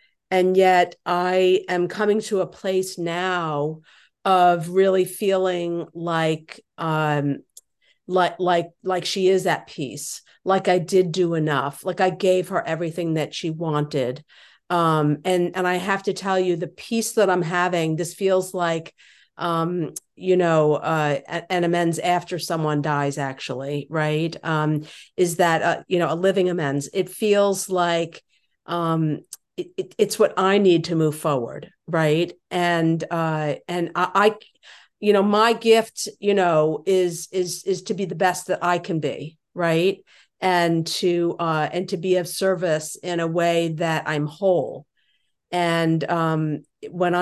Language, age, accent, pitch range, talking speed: English, 50-69, American, 160-185 Hz, 160 wpm